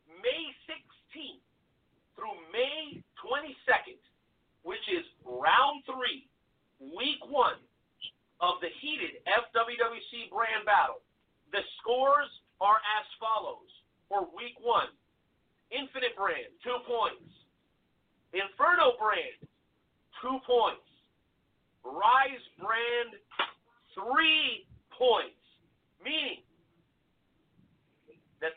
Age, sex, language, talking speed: 50-69, male, English, 80 wpm